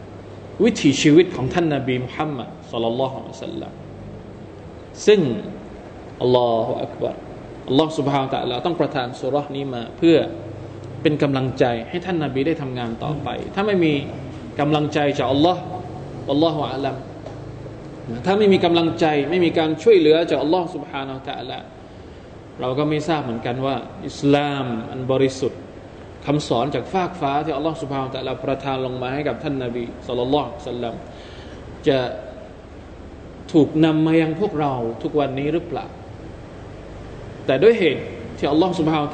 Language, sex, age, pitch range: Thai, male, 20-39, 120-155 Hz